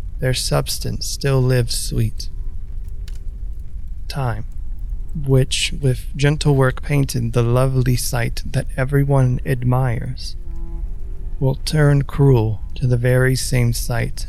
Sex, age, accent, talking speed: male, 30-49, American, 105 wpm